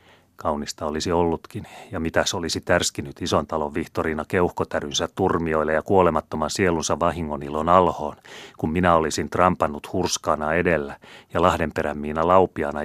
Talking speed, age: 125 wpm, 30-49